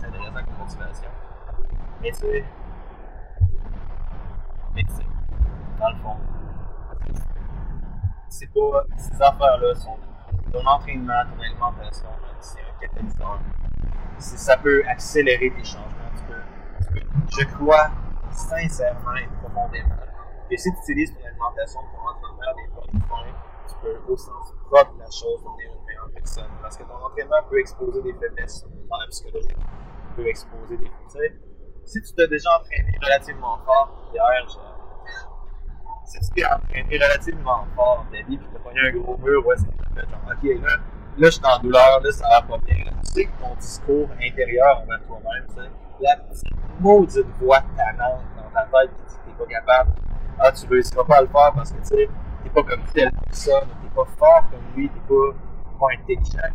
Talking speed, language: 170 wpm, French